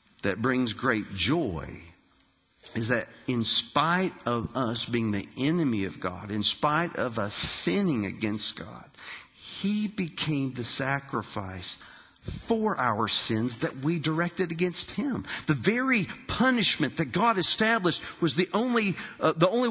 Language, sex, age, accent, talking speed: English, male, 50-69, American, 140 wpm